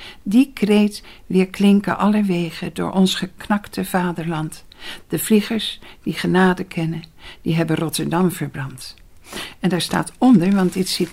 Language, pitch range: Dutch, 170-210 Hz